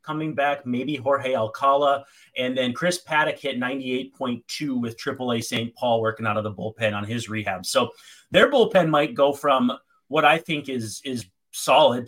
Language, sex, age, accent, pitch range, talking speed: English, male, 30-49, American, 125-175 Hz, 175 wpm